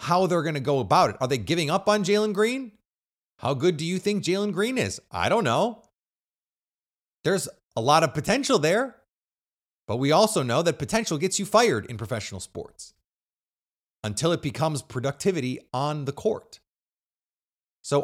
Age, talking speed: 30-49, 170 wpm